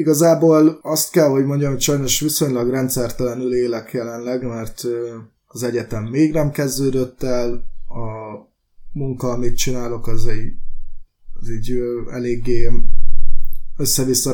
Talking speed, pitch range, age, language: 115 wpm, 120-135 Hz, 20-39, Hungarian